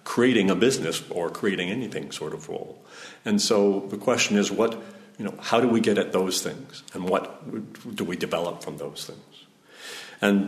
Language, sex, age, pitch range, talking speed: English, male, 50-69, 95-110 Hz, 190 wpm